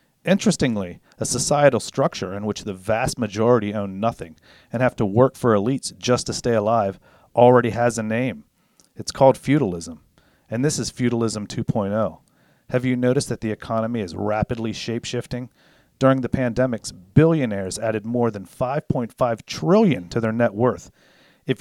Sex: male